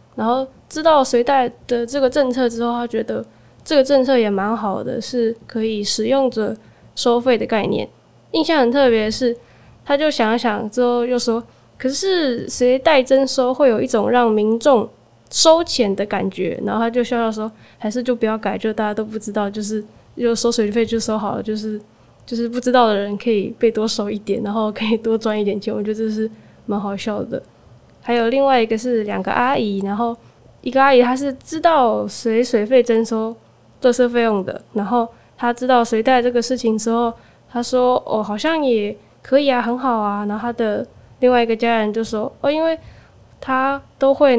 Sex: female